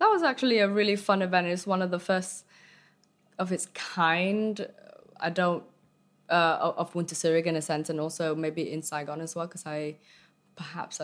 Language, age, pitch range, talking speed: English, 20-39, 155-190 Hz, 185 wpm